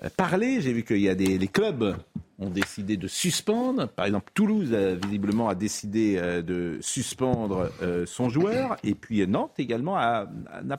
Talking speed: 160 wpm